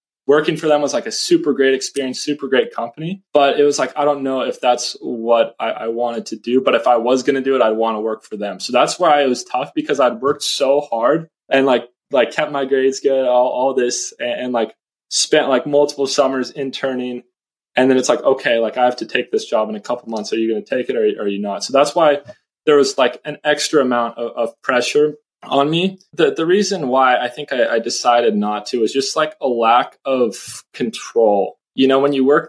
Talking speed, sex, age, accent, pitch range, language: 245 wpm, male, 20-39, American, 120-145 Hz, English